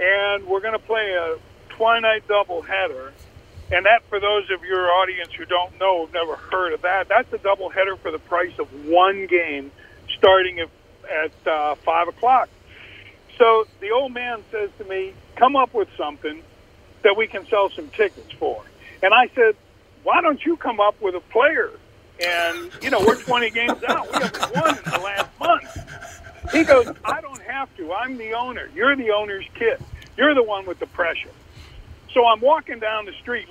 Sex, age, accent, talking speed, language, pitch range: male, 50-69, American, 190 wpm, English, 170-265 Hz